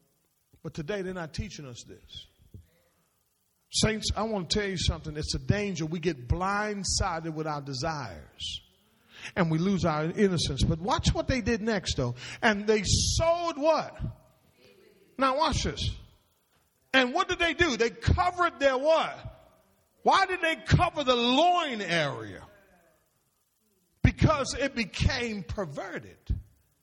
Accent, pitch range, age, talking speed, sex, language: American, 160-270 Hz, 50-69, 140 wpm, male, English